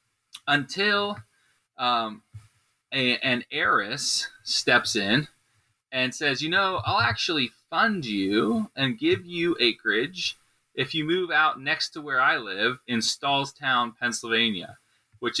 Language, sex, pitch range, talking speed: English, male, 110-135 Hz, 120 wpm